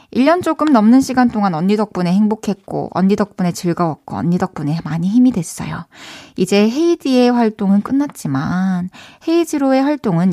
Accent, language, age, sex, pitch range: native, Korean, 20-39, female, 180-260 Hz